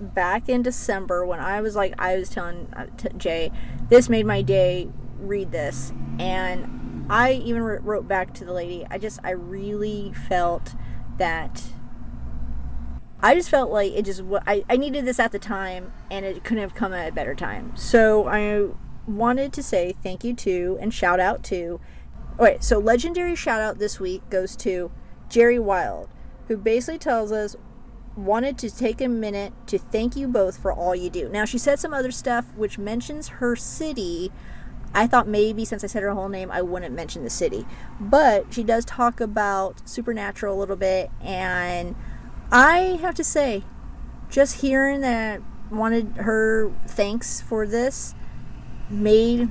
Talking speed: 170 wpm